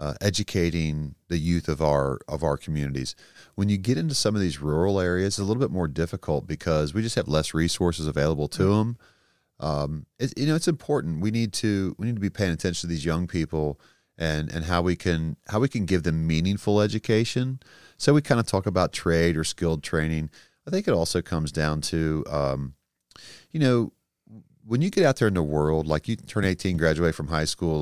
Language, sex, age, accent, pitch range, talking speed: English, male, 30-49, American, 75-105 Hz, 215 wpm